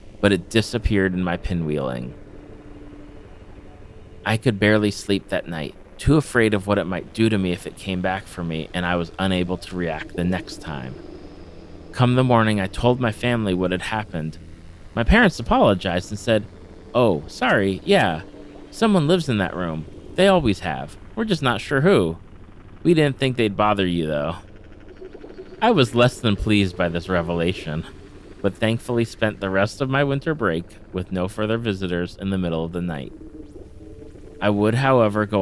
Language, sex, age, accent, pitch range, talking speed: English, male, 30-49, American, 90-110 Hz, 180 wpm